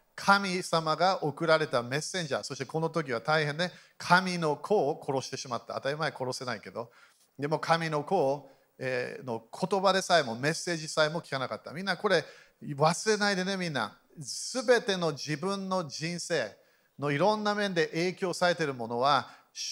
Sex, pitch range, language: male, 140-185 Hz, Japanese